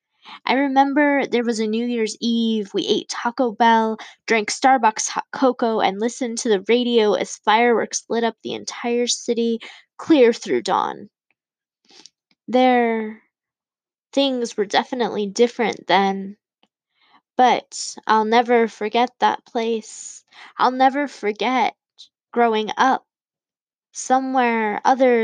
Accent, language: American, English